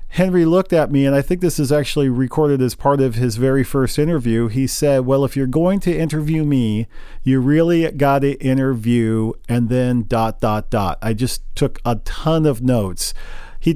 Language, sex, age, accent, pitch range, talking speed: English, male, 40-59, American, 120-145 Hz, 195 wpm